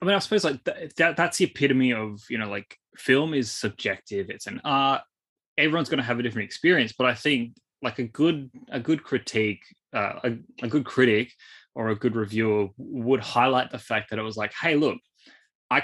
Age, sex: 20-39, male